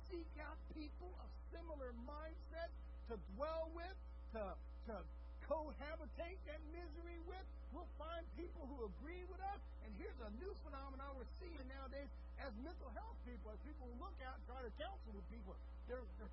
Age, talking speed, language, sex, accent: 50-69, 175 wpm, English, male, American